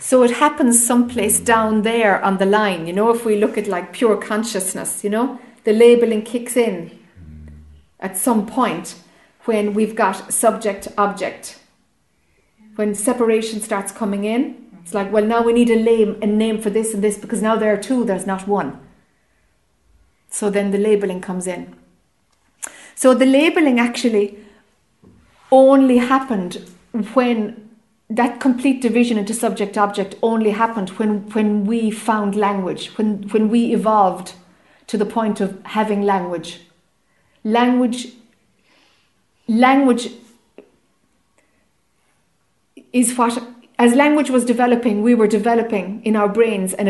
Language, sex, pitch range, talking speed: English, female, 200-235 Hz, 135 wpm